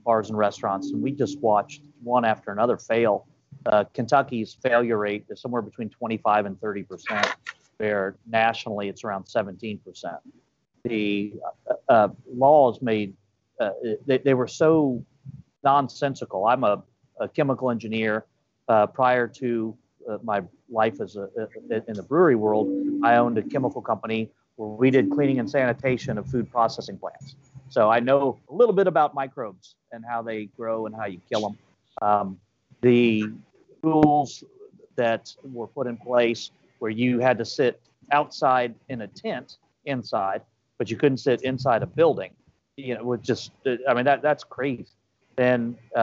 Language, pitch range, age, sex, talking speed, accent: English, 110-130 Hz, 40-59, male, 160 wpm, American